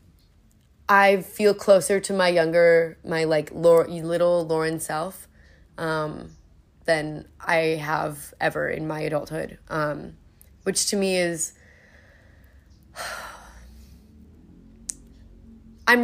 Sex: female